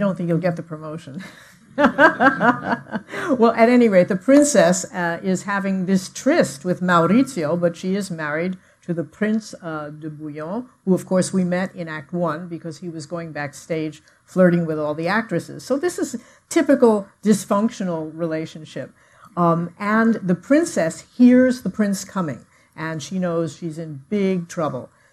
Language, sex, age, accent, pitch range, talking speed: English, female, 50-69, American, 165-205 Hz, 165 wpm